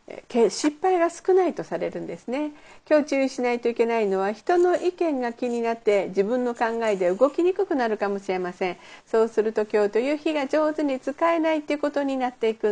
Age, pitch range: 50-69, 205-290 Hz